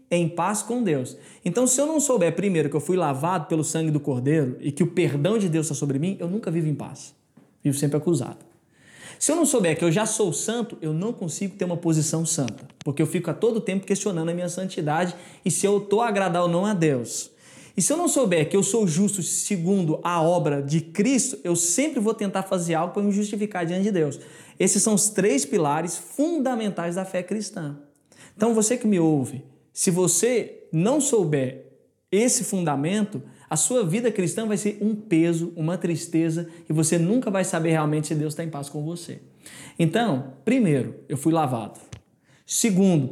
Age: 20-39